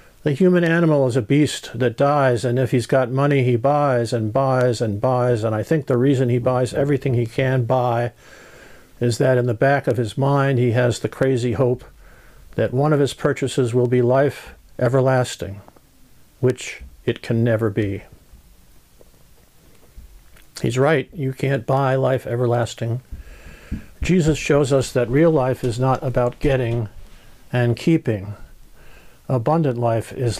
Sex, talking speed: male, 155 wpm